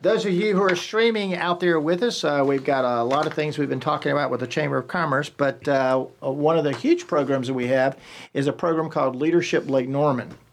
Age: 50-69